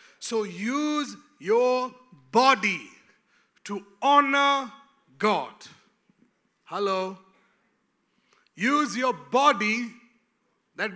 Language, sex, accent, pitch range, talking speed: English, male, Indian, 205-265 Hz, 65 wpm